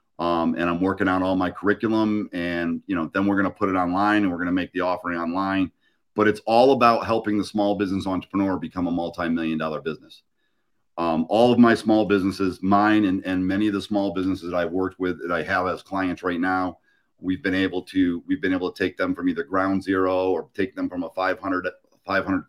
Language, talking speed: English, 225 wpm